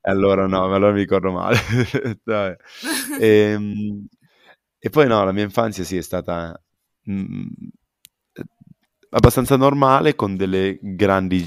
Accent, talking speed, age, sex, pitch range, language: native, 125 wpm, 20-39, male, 85-100 Hz, Italian